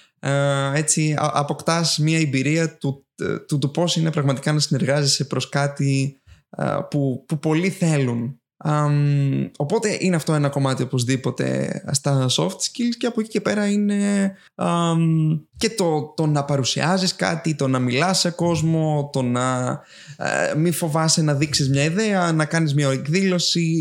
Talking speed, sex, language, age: 145 wpm, male, Greek, 20-39